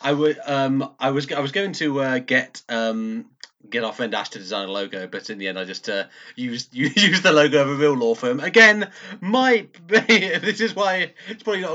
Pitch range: 125-180 Hz